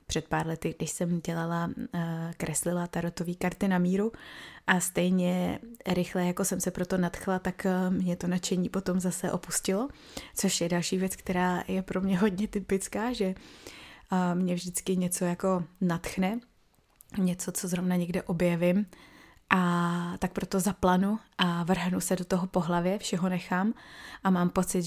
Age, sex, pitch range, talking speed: 20-39, female, 175-200 Hz, 150 wpm